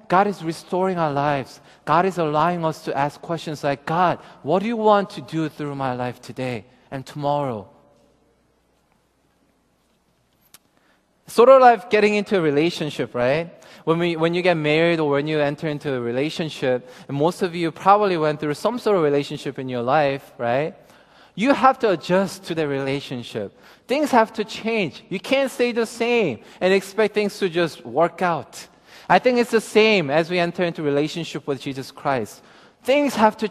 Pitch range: 150-210 Hz